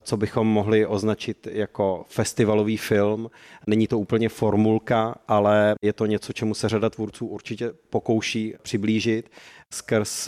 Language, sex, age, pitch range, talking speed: Czech, male, 30-49, 105-115 Hz, 135 wpm